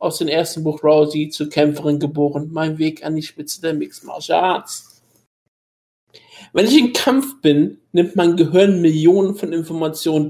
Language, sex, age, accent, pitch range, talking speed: German, male, 50-69, German, 150-175 Hz, 155 wpm